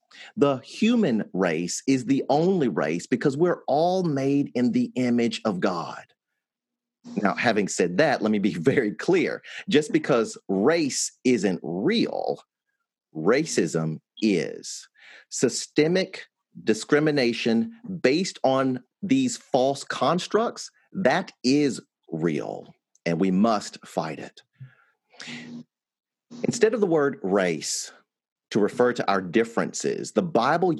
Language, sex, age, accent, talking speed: English, male, 40-59, American, 115 wpm